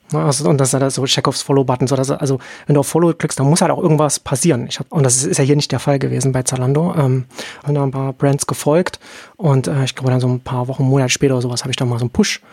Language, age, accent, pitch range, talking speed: German, 30-49, German, 135-165 Hz, 300 wpm